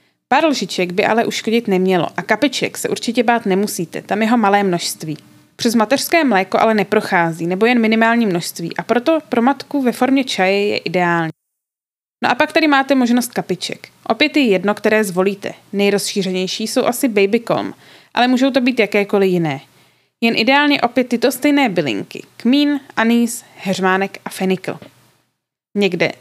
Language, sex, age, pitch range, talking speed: Czech, female, 20-39, 200-255 Hz, 155 wpm